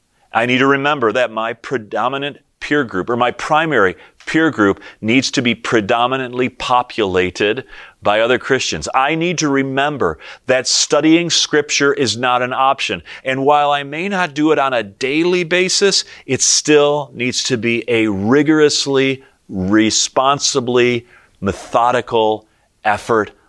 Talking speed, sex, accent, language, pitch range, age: 140 wpm, male, American, English, 110-140 Hz, 40-59